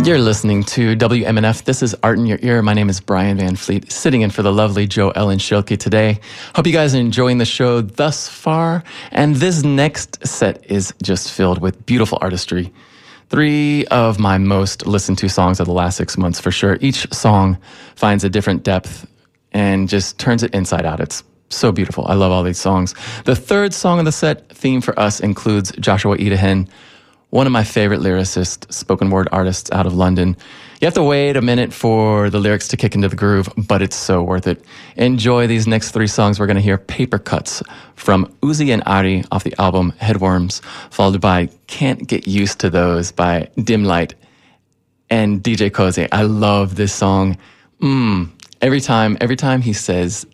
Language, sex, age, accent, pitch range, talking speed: English, male, 30-49, American, 95-115 Hz, 195 wpm